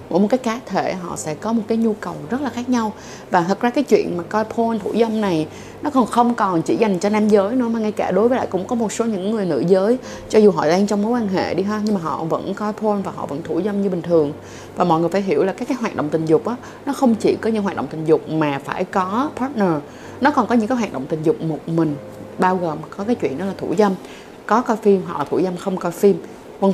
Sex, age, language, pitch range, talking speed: female, 20-39, Vietnamese, 175-230 Hz, 295 wpm